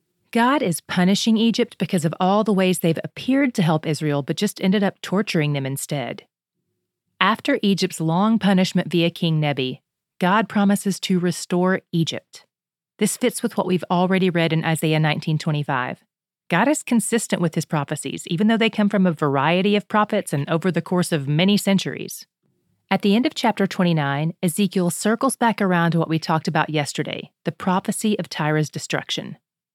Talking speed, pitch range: 175 wpm, 165-210 Hz